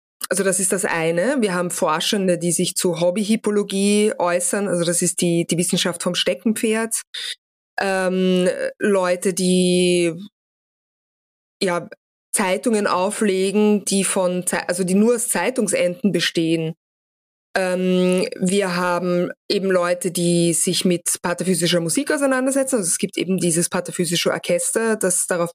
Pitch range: 175-210 Hz